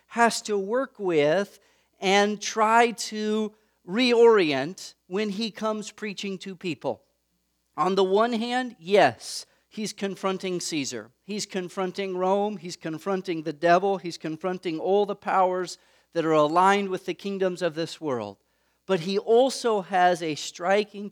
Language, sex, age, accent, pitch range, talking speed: English, male, 40-59, American, 160-215 Hz, 140 wpm